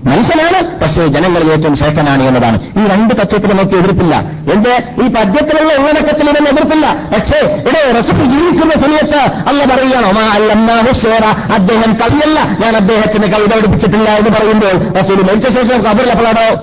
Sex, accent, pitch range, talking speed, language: male, native, 175-235 Hz, 125 wpm, Malayalam